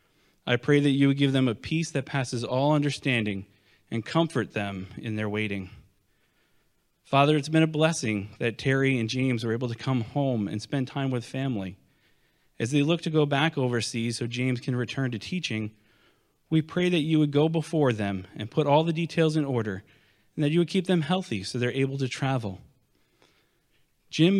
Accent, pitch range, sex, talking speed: American, 110-145 Hz, male, 195 wpm